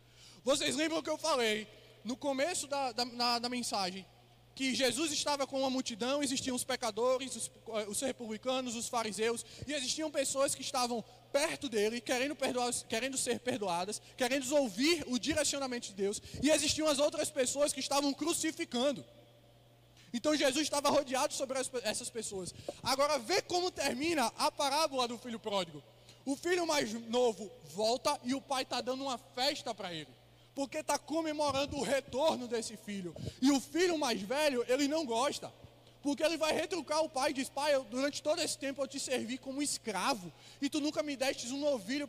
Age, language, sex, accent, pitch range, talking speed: 20-39, Portuguese, male, Brazilian, 220-285 Hz, 170 wpm